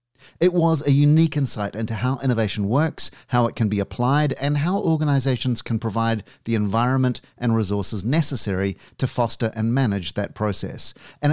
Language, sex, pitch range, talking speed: English, male, 110-145 Hz, 165 wpm